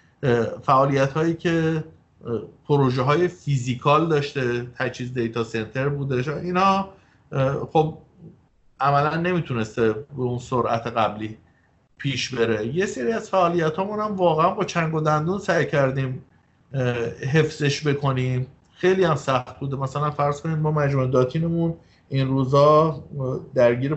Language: Persian